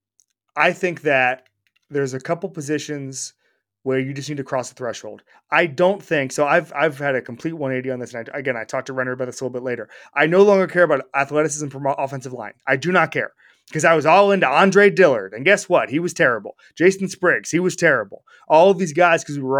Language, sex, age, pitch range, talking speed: English, male, 30-49, 130-170 Hz, 240 wpm